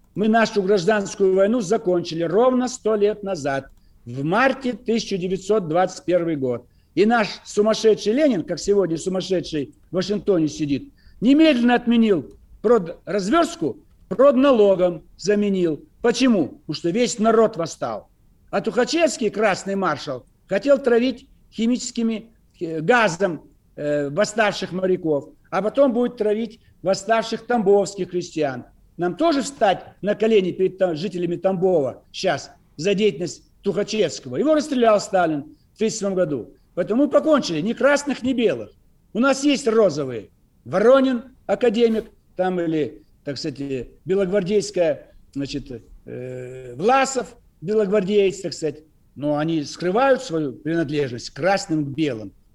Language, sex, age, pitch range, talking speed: Russian, male, 60-79, 155-230 Hz, 120 wpm